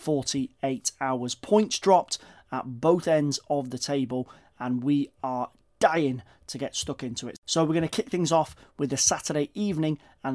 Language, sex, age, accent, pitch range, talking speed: English, male, 30-49, British, 130-160 Hz, 180 wpm